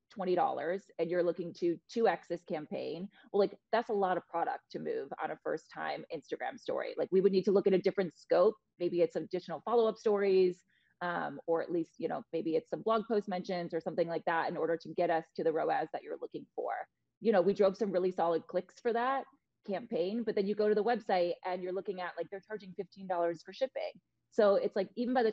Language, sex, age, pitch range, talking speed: English, female, 30-49, 170-215 Hz, 235 wpm